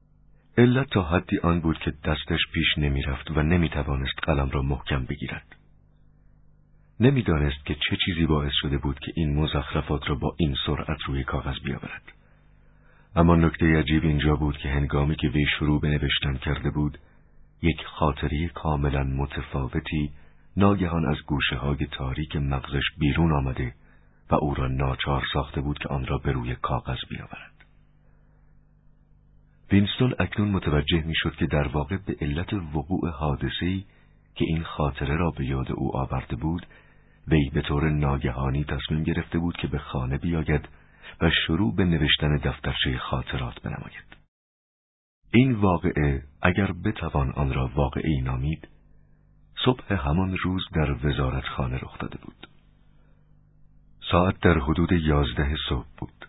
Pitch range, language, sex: 70-85 Hz, Persian, male